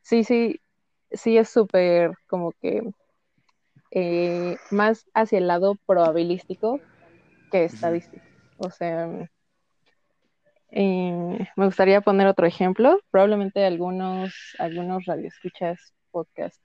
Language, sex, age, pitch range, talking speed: Spanish, female, 20-39, 180-225 Hz, 100 wpm